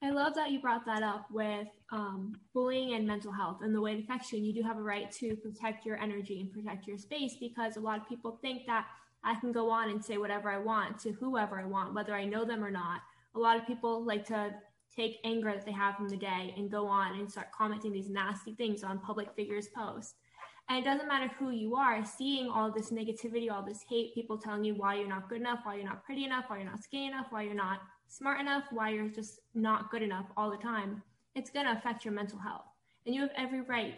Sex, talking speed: female, 250 wpm